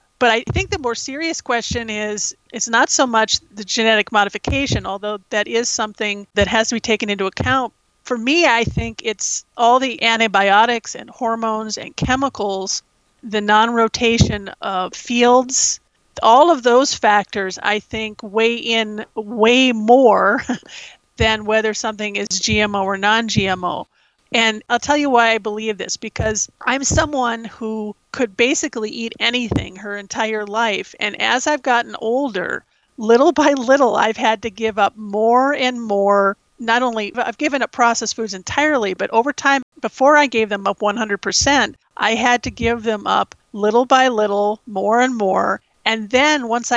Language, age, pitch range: English, 40-59, 210-250 Hz